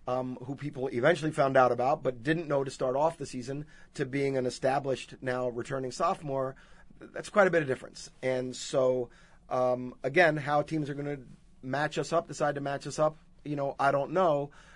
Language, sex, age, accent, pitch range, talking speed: English, male, 30-49, American, 125-150 Hz, 215 wpm